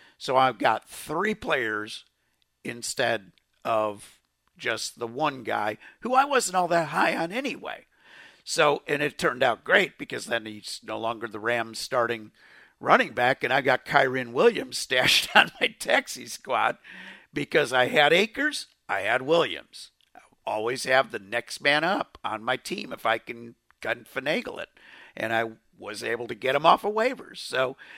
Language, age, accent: English, 50-69, American